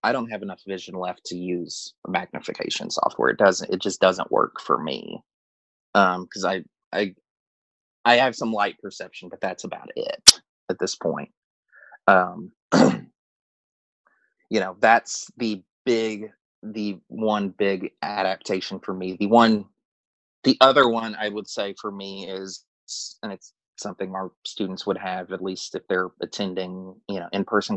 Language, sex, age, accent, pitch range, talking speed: English, male, 30-49, American, 90-105 Hz, 160 wpm